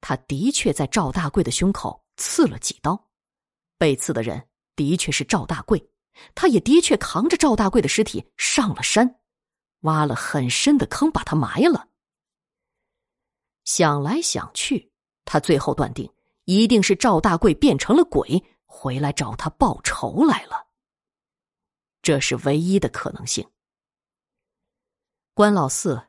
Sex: female